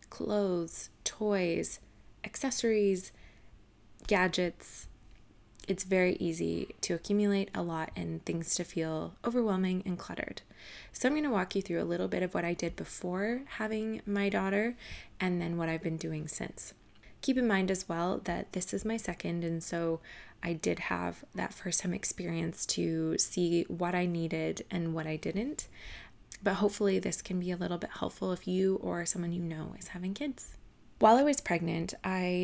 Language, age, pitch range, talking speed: English, 20-39, 165-200 Hz, 175 wpm